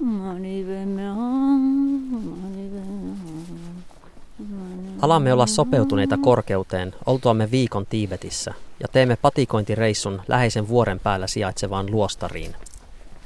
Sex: male